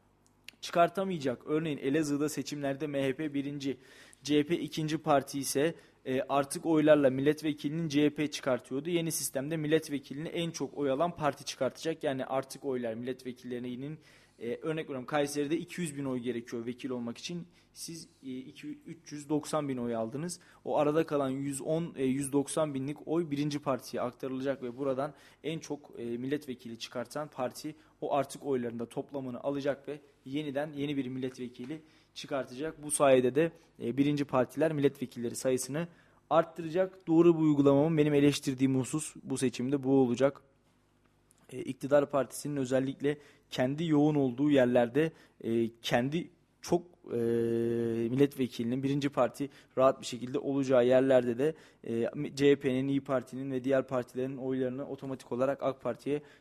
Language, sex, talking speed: Turkish, male, 125 wpm